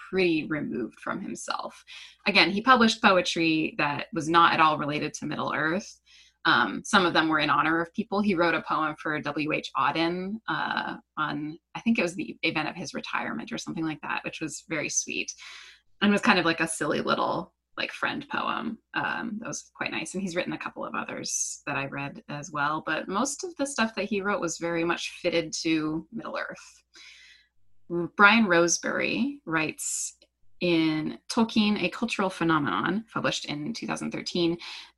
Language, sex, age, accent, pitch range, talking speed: English, female, 20-39, American, 155-200 Hz, 185 wpm